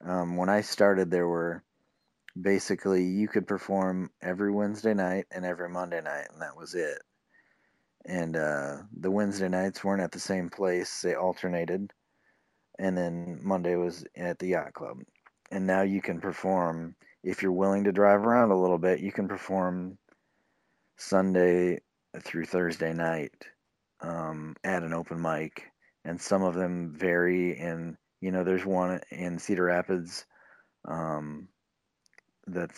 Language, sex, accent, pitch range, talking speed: English, male, American, 85-95 Hz, 150 wpm